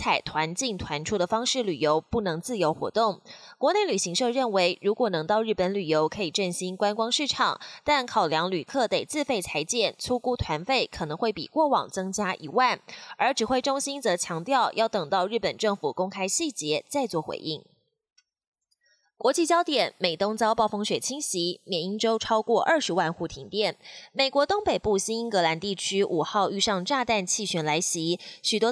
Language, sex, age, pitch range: Chinese, female, 20-39, 180-255 Hz